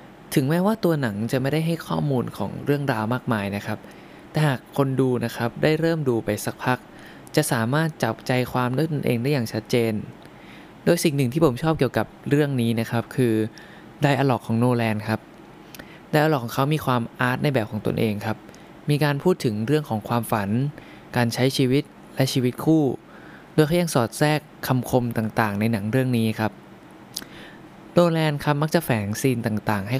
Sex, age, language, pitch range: male, 20-39, Thai, 115-145 Hz